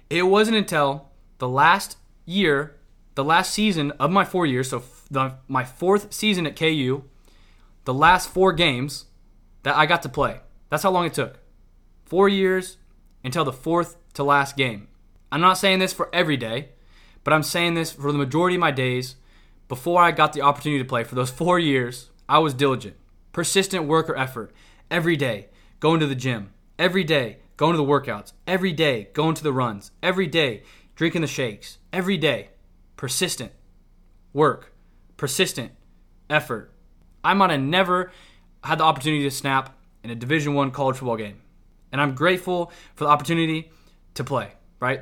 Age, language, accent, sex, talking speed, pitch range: 20-39, English, American, male, 175 wpm, 120-170 Hz